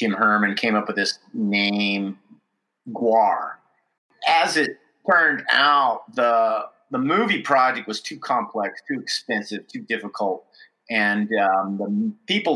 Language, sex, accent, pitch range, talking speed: English, male, American, 100-115 Hz, 130 wpm